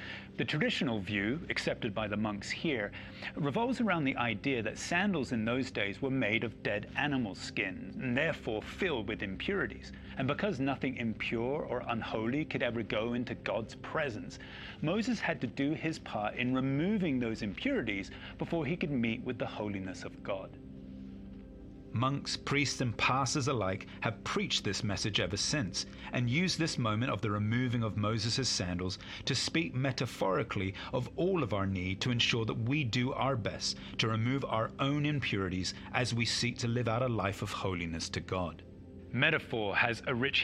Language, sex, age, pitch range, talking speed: English, male, 30-49, 100-135 Hz, 170 wpm